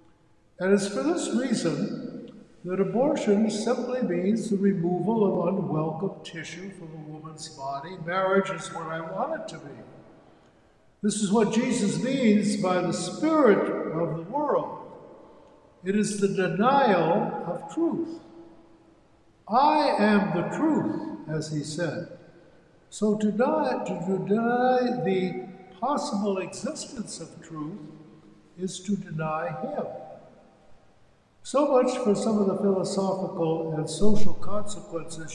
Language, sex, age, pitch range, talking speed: English, male, 60-79, 160-210 Hz, 125 wpm